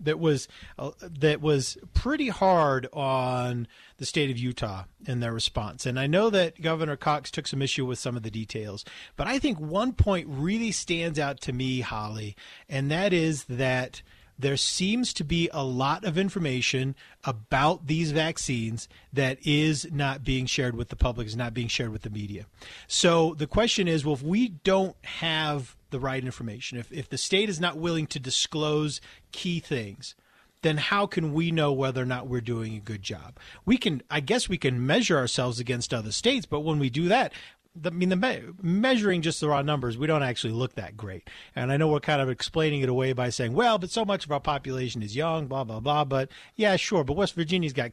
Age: 30-49